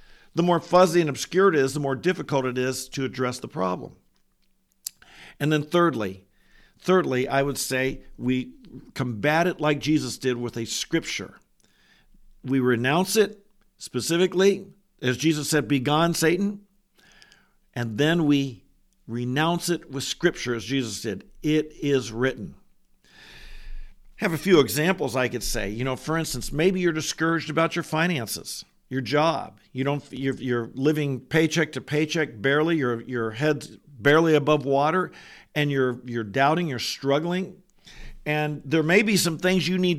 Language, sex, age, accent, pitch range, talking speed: English, male, 50-69, American, 130-170 Hz, 155 wpm